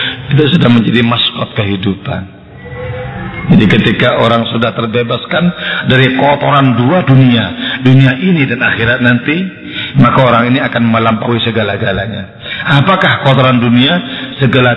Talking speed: 120 wpm